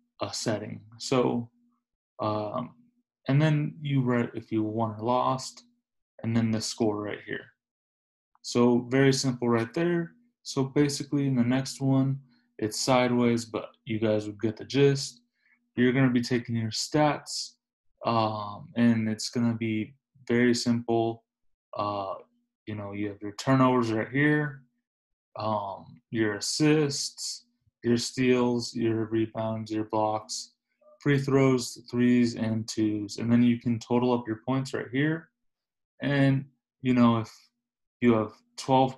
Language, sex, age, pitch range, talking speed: English, male, 20-39, 110-135 Hz, 140 wpm